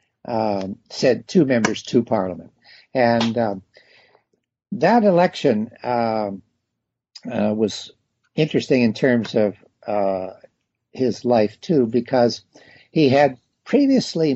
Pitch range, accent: 105-135 Hz, American